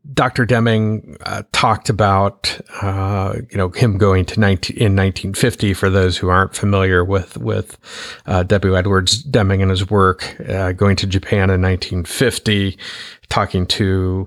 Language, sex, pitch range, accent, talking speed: English, male, 95-110 Hz, American, 150 wpm